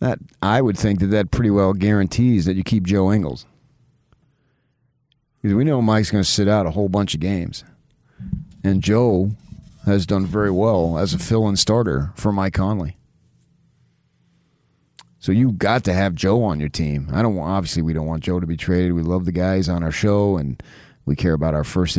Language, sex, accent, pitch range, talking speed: English, male, American, 90-105 Hz, 200 wpm